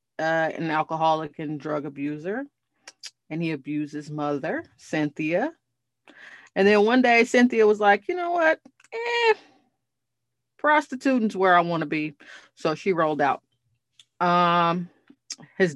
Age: 30-49